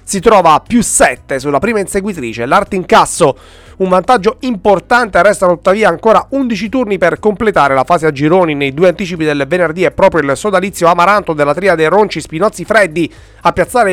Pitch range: 145-205 Hz